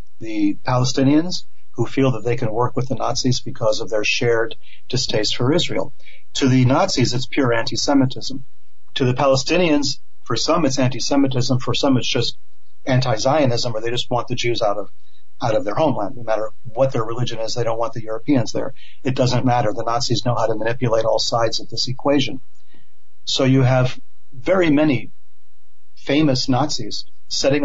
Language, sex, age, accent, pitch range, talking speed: English, male, 40-59, American, 115-135 Hz, 180 wpm